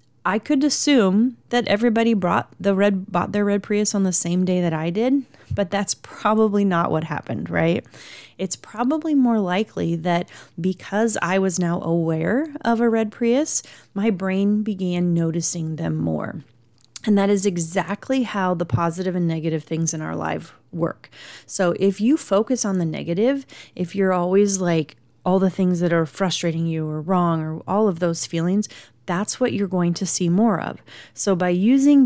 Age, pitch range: 30-49, 170-210 Hz